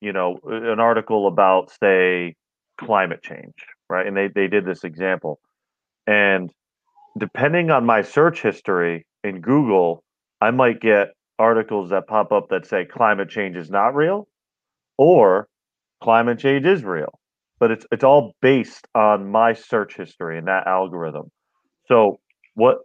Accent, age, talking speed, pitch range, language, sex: American, 40-59, 145 wpm, 100-120 Hz, English, male